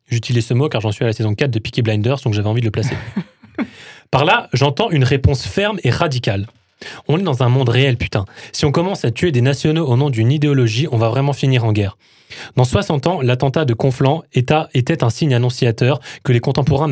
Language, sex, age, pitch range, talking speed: French, male, 20-39, 115-150 Hz, 225 wpm